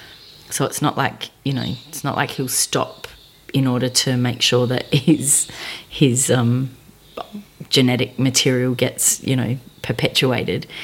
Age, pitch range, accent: 30-49, 130-160 Hz, Australian